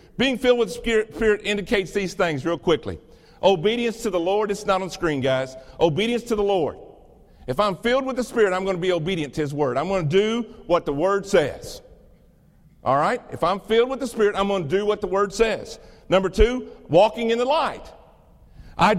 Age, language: 50-69, English